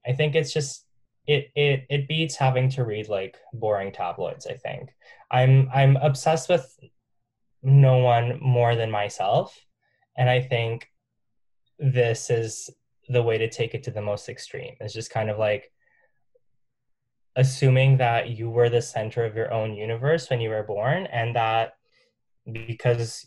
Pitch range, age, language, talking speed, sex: 115-135 Hz, 10-29, English, 155 wpm, male